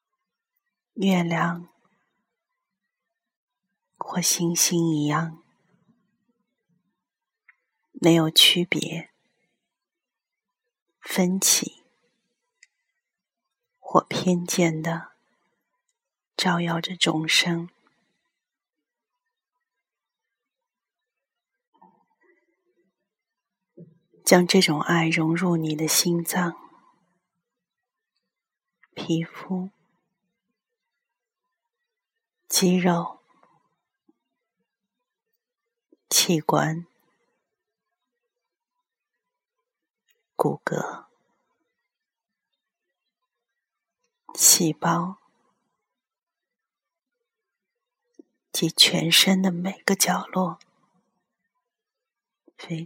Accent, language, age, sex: native, Chinese, 40-59, female